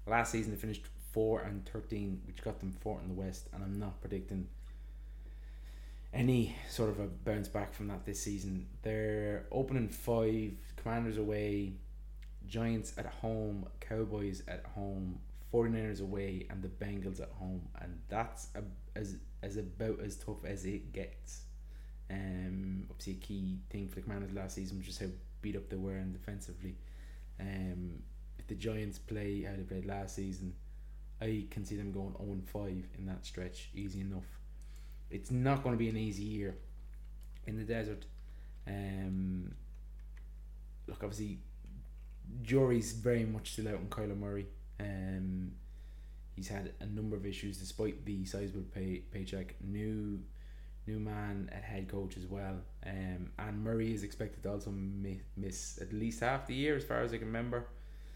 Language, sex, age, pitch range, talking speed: English, male, 20-39, 90-105 Hz, 160 wpm